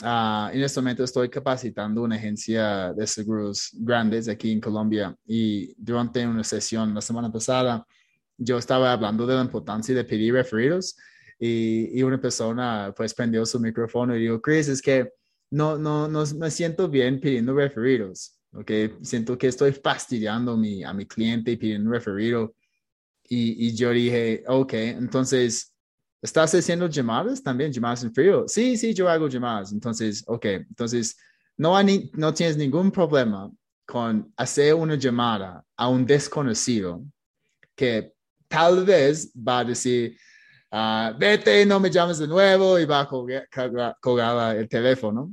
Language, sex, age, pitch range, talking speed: Spanish, male, 20-39, 115-145 Hz, 155 wpm